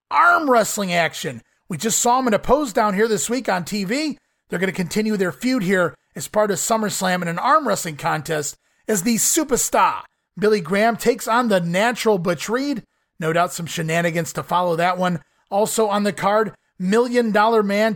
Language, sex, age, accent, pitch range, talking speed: English, male, 30-49, American, 170-225 Hz, 195 wpm